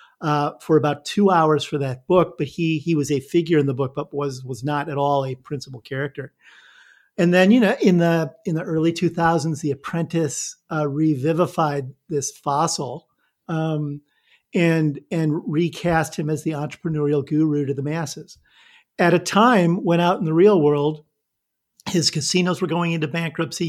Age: 50-69